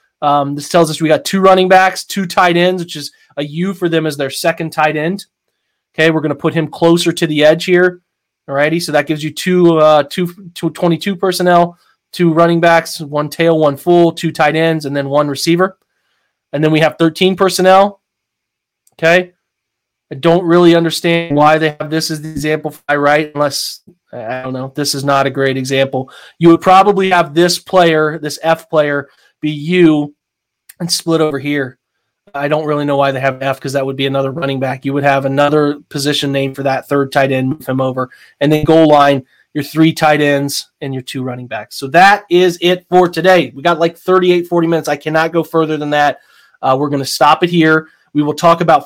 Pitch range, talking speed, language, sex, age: 145-175 Hz, 215 wpm, English, male, 20-39